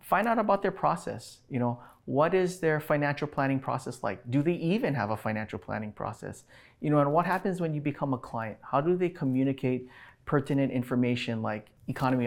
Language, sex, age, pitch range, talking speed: English, male, 30-49, 115-140 Hz, 195 wpm